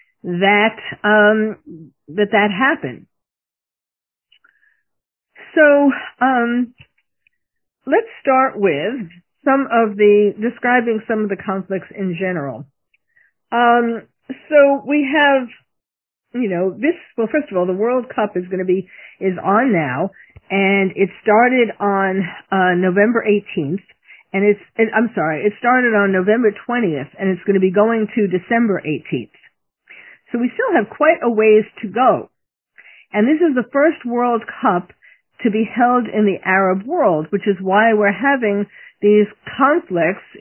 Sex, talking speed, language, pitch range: female, 145 wpm, English, 190-245 Hz